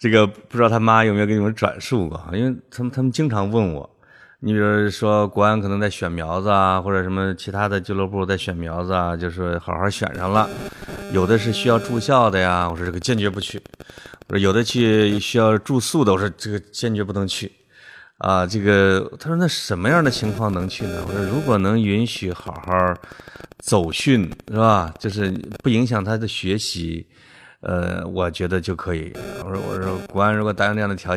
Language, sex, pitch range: Chinese, male, 90-115 Hz